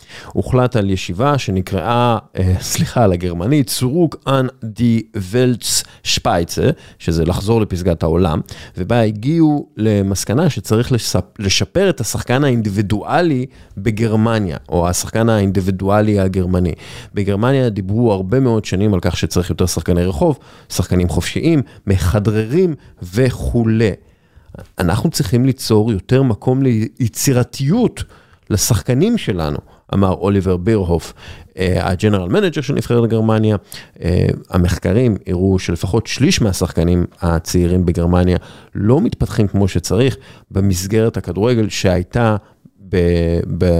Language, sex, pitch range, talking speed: Hebrew, male, 90-120 Hz, 105 wpm